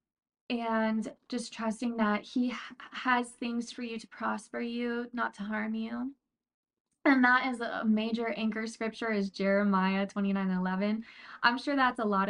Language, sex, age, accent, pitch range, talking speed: English, female, 20-39, American, 210-240 Hz, 150 wpm